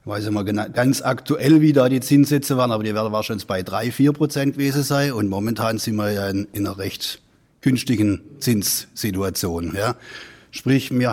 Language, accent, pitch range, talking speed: German, German, 100-135 Hz, 195 wpm